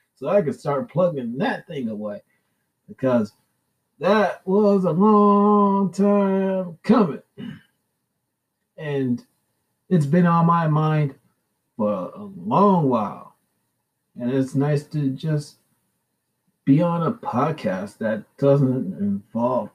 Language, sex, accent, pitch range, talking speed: English, male, American, 135-195 Hz, 110 wpm